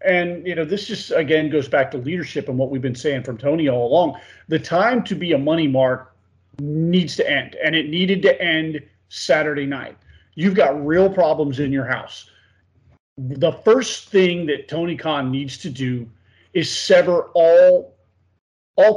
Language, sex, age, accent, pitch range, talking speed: English, male, 40-59, American, 135-195 Hz, 175 wpm